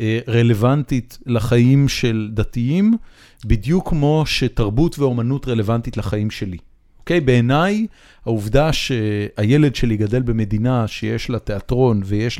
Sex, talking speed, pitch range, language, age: male, 110 wpm, 115-155 Hz, Hebrew, 40-59